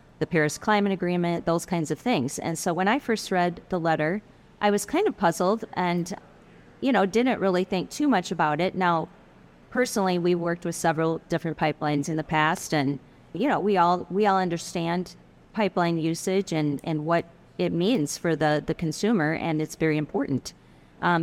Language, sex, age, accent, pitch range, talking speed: English, female, 30-49, American, 160-195 Hz, 185 wpm